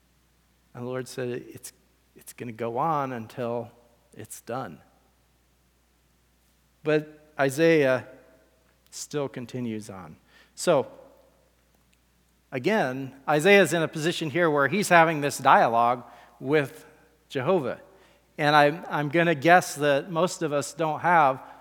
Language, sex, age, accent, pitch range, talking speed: English, male, 40-59, American, 125-155 Hz, 120 wpm